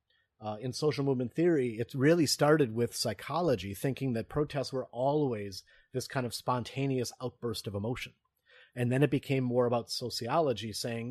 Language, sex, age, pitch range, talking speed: English, male, 30-49, 110-135 Hz, 160 wpm